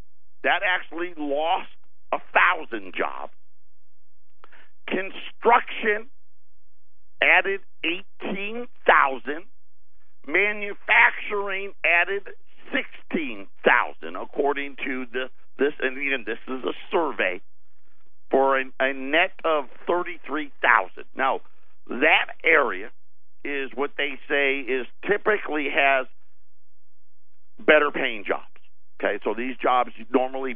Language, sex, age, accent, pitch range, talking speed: English, male, 50-69, American, 110-185 Hz, 85 wpm